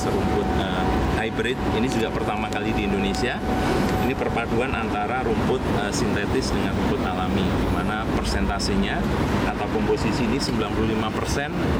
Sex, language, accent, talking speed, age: male, Indonesian, native, 120 wpm, 30-49